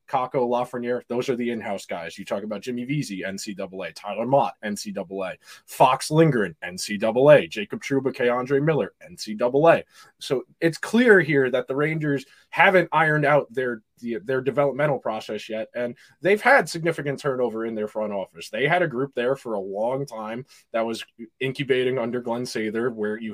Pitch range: 115-145 Hz